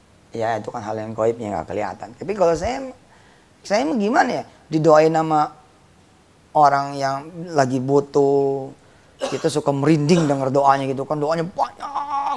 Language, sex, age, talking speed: Indonesian, female, 30-49, 140 wpm